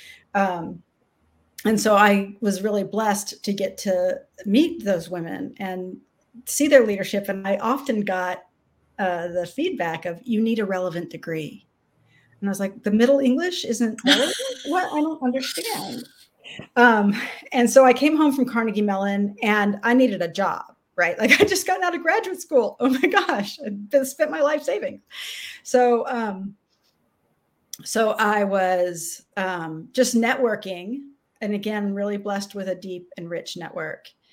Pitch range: 195-260 Hz